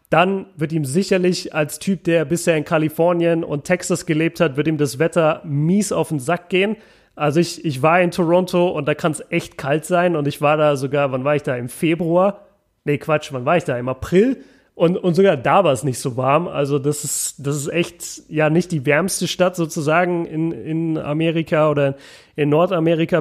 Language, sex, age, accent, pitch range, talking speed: German, male, 30-49, German, 145-185 Hz, 210 wpm